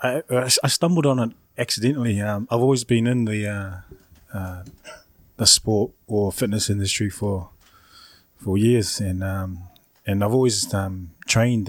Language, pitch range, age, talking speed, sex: English, 95-115 Hz, 20-39, 150 wpm, male